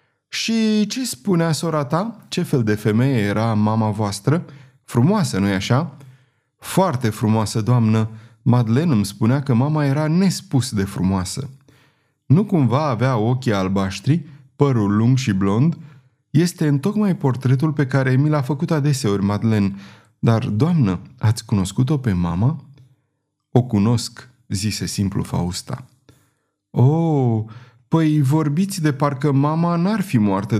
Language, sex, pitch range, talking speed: Romanian, male, 110-150 Hz, 135 wpm